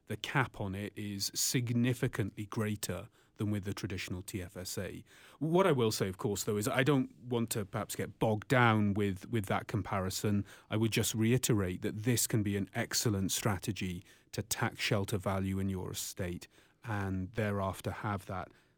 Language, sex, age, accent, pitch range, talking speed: English, male, 30-49, British, 100-125 Hz, 175 wpm